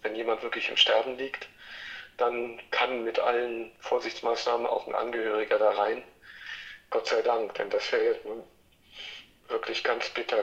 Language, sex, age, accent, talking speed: German, male, 50-69, German, 145 wpm